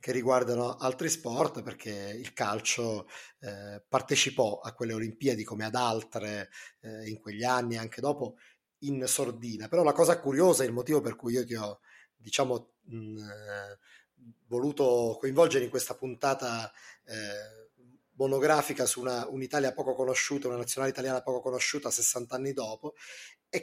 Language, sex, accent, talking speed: Italian, male, native, 145 wpm